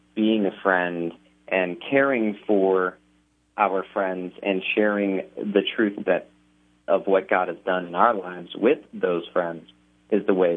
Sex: male